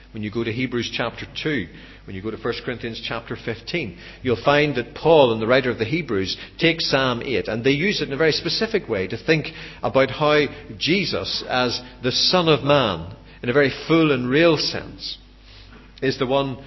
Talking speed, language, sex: 205 wpm, English, male